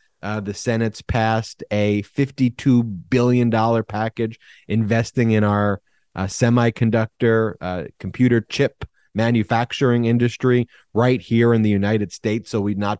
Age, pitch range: 30-49, 105-115 Hz